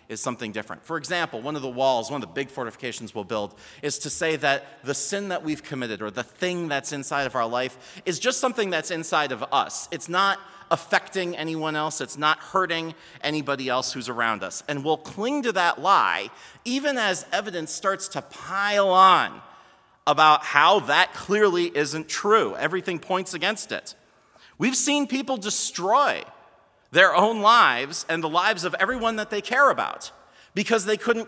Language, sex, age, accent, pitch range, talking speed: English, male, 30-49, American, 135-200 Hz, 180 wpm